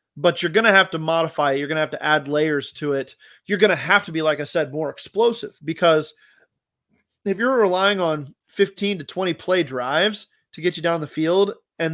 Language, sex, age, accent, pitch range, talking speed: English, male, 30-49, American, 145-190 Hz, 225 wpm